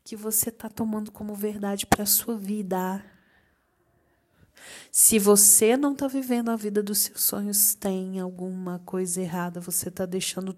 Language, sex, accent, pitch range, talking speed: Portuguese, female, Brazilian, 185-235 Hz, 155 wpm